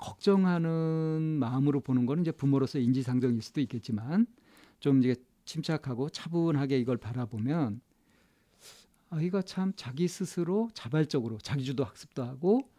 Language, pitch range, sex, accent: Korean, 125-170 Hz, male, native